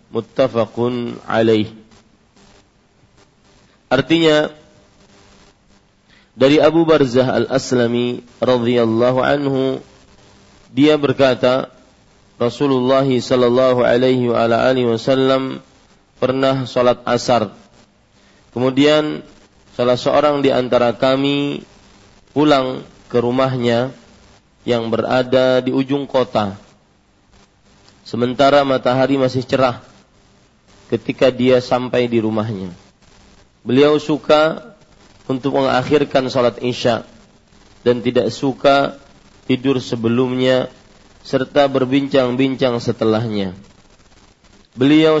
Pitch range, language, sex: 110-130 Hz, Malay, male